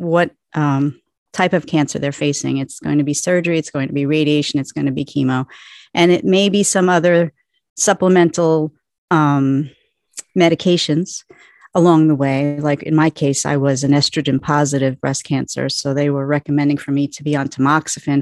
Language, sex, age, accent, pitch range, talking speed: English, female, 40-59, American, 145-175 Hz, 180 wpm